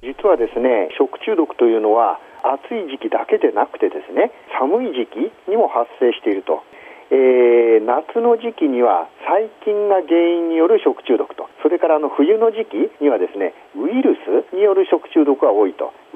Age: 50-69